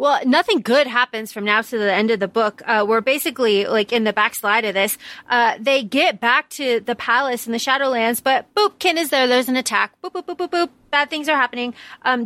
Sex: female